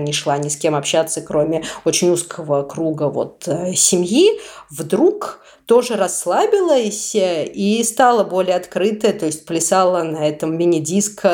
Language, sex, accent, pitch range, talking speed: Russian, female, native, 165-220 Hz, 130 wpm